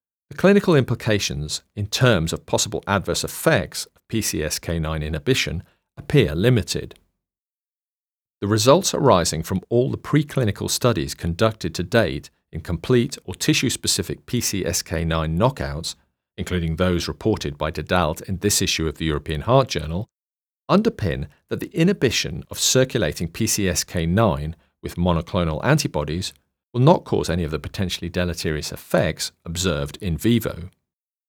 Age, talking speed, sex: 40-59, 125 wpm, male